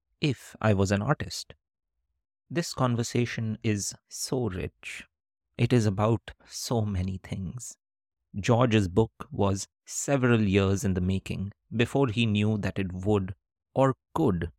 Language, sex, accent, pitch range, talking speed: English, male, Indian, 95-115 Hz, 130 wpm